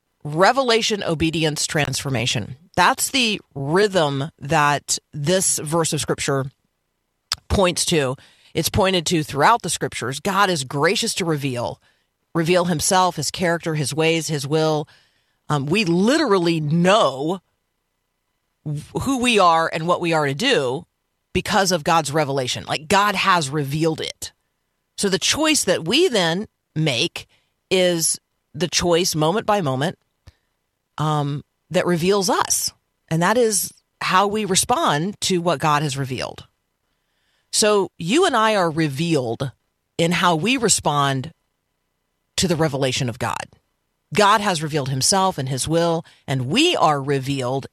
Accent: American